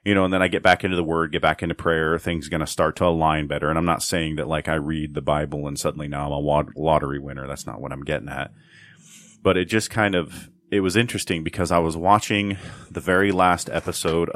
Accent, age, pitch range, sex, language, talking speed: American, 30-49, 75-95 Hz, male, English, 255 wpm